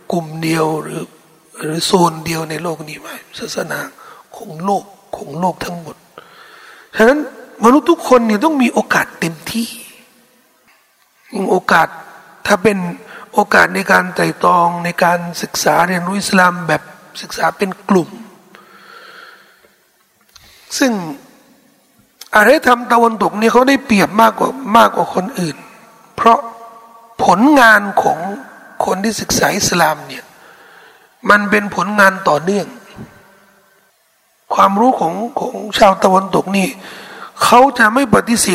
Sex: male